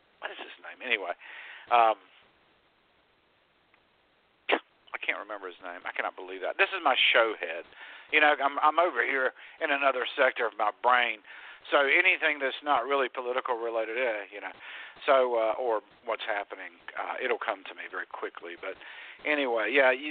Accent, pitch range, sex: American, 115-145 Hz, male